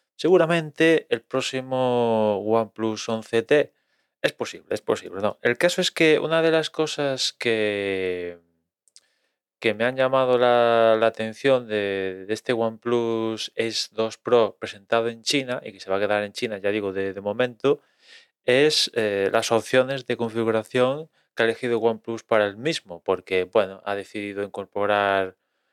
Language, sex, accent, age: Spanish, male, Spanish, 20-39